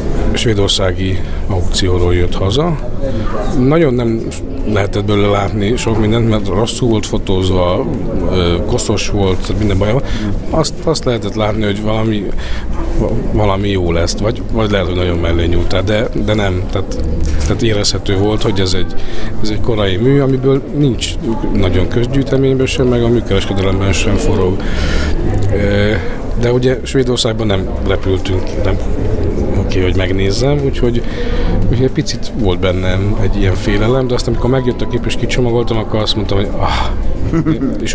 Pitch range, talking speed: 95-115 Hz, 140 wpm